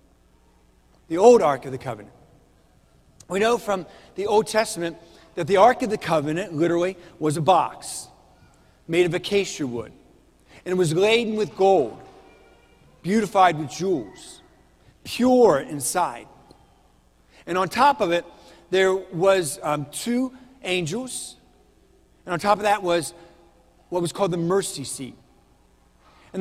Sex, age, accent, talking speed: male, 50-69, American, 135 wpm